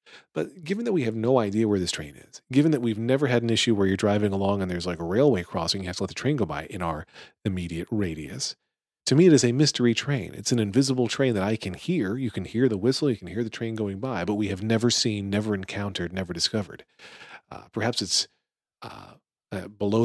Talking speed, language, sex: 245 wpm, English, male